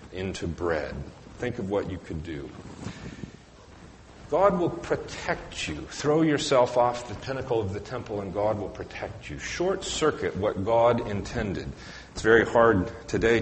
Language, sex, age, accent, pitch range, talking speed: English, male, 40-59, American, 100-130 Hz, 150 wpm